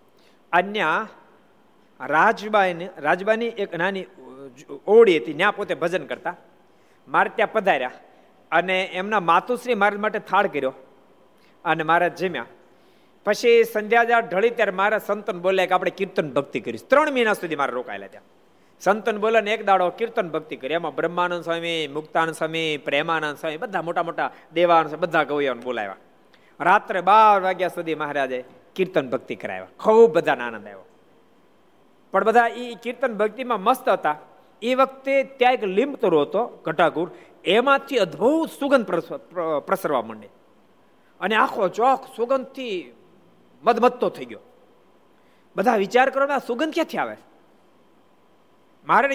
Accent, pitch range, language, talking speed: native, 165-235 Hz, Gujarati, 100 wpm